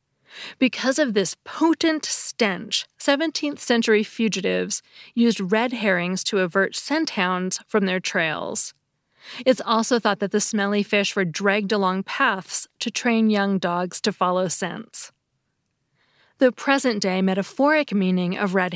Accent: American